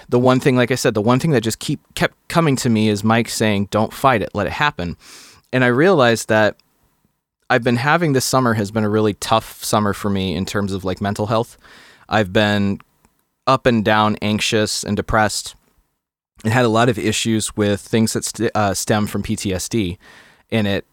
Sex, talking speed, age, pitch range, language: male, 205 wpm, 20-39, 100-125 Hz, English